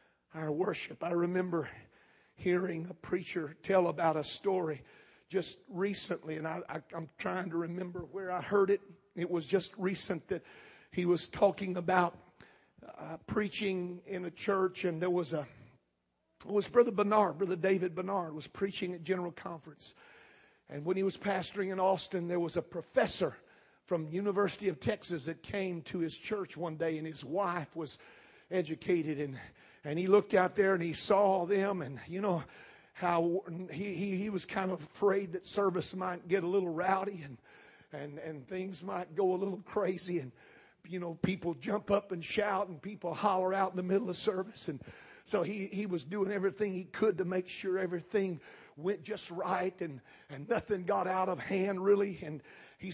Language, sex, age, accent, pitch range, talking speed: English, male, 50-69, American, 170-195 Hz, 180 wpm